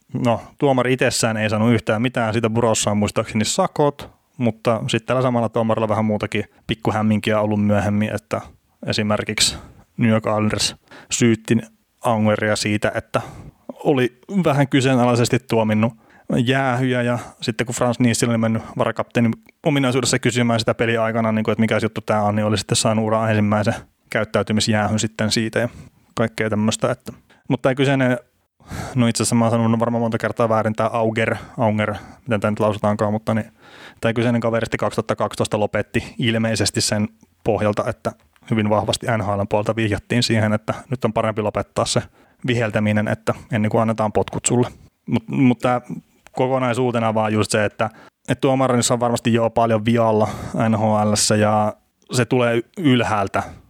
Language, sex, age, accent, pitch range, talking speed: Finnish, male, 30-49, native, 105-120 Hz, 150 wpm